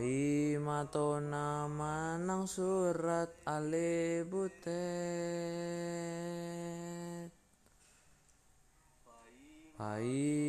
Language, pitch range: Indonesian, 145-170 Hz